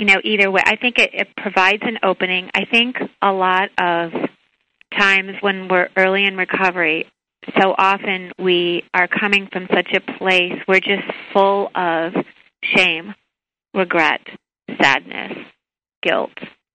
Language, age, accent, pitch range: English, 40-59, American, 170-195 Hz